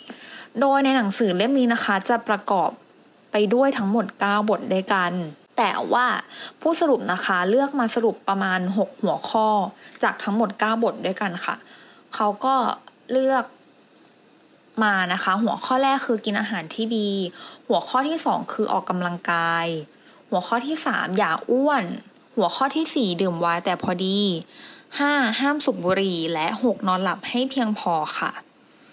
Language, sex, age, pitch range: English, female, 20-39, 185-245 Hz